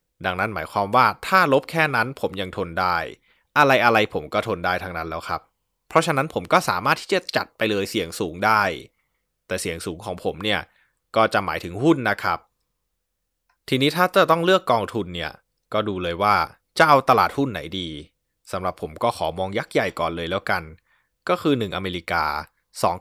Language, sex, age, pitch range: Thai, male, 20-39, 90-120 Hz